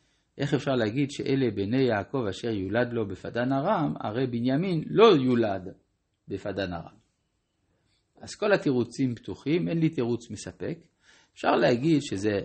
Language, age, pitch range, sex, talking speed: Hebrew, 50-69, 100-130 Hz, male, 135 wpm